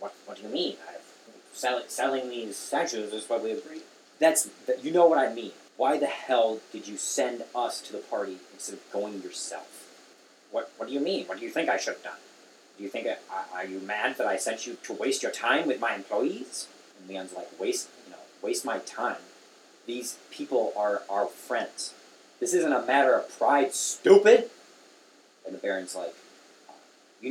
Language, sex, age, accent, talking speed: English, male, 30-49, American, 200 wpm